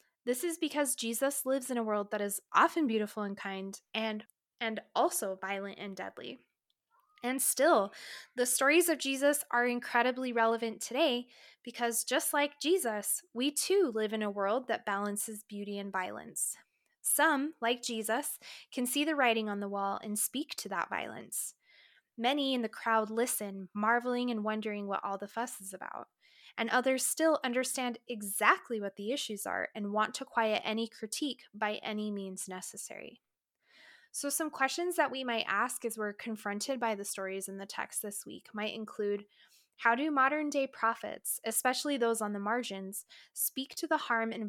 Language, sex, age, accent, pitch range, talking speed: English, female, 20-39, American, 210-265 Hz, 175 wpm